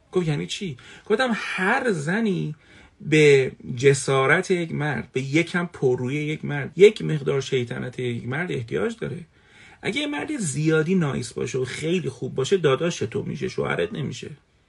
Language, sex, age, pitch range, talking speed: Persian, male, 40-59, 130-195 Hz, 150 wpm